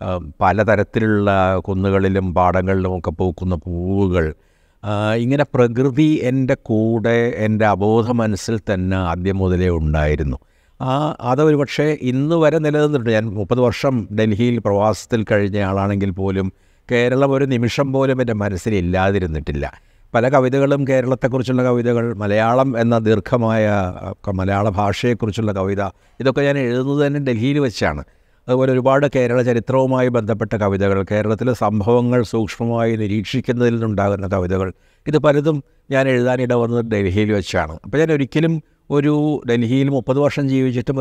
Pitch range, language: 100-130 Hz, Malayalam